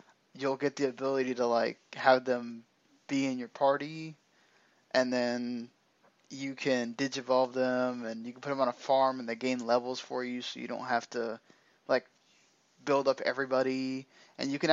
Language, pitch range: English, 125-150 Hz